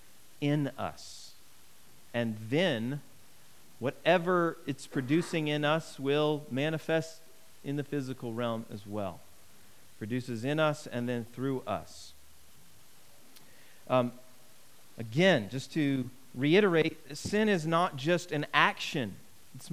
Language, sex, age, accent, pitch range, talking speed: English, male, 40-59, American, 120-160 Hz, 110 wpm